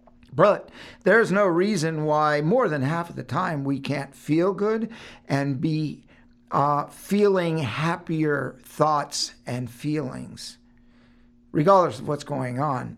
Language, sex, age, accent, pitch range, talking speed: English, male, 60-79, American, 120-170 Hz, 130 wpm